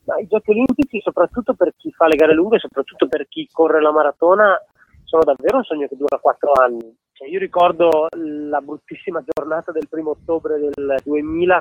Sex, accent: male, native